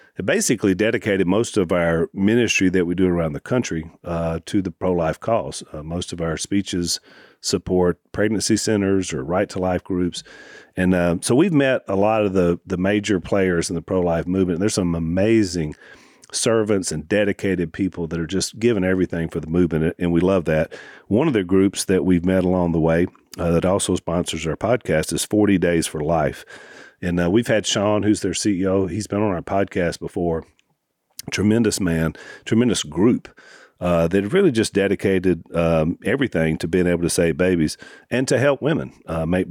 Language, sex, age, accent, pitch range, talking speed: English, male, 40-59, American, 85-100 Hz, 185 wpm